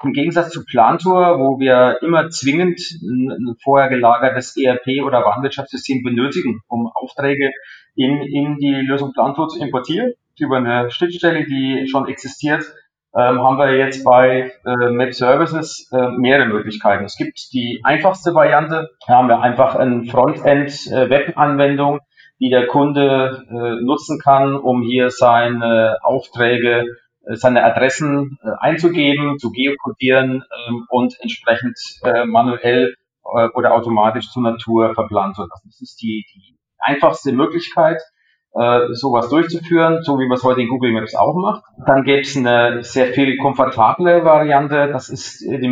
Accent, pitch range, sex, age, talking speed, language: German, 120-145 Hz, male, 40-59, 140 wpm, German